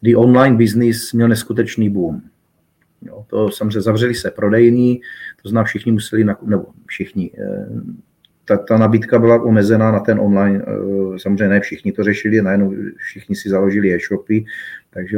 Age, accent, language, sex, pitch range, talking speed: 30-49, native, Czech, male, 110-120 Hz, 150 wpm